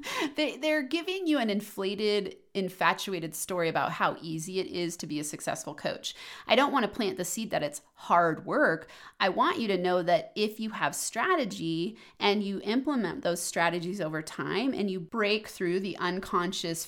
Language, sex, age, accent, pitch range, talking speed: English, female, 30-49, American, 160-200 Hz, 180 wpm